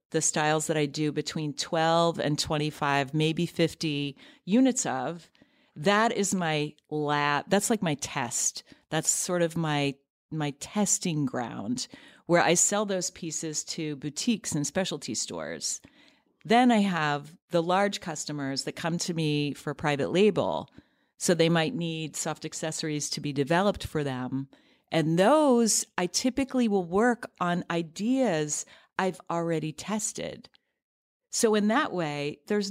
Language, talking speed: English, 145 wpm